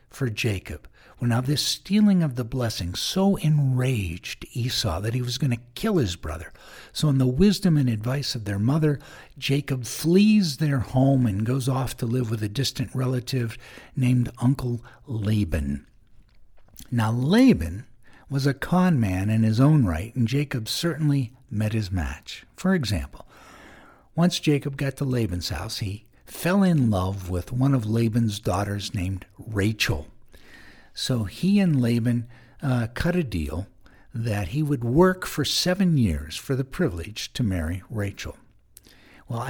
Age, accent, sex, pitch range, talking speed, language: 60-79, American, male, 110-140 Hz, 155 wpm, English